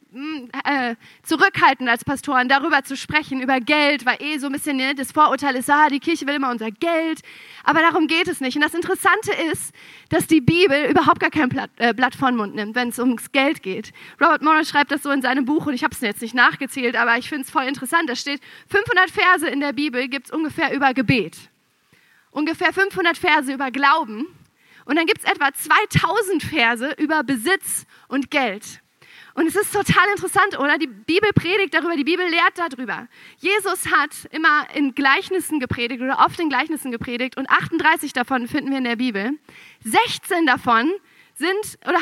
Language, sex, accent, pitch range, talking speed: German, female, German, 265-340 Hz, 195 wpm